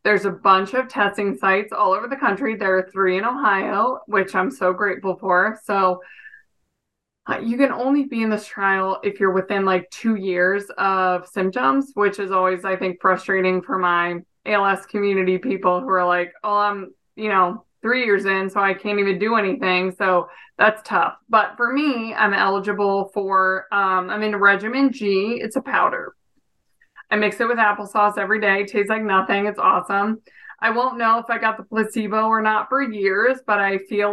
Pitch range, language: 195-220 Hz, English